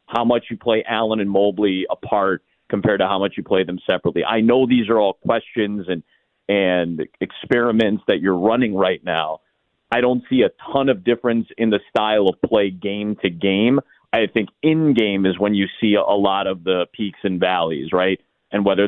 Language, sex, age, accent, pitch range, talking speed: English, male, 40-59, American, 100-130 Hz, 200 wpm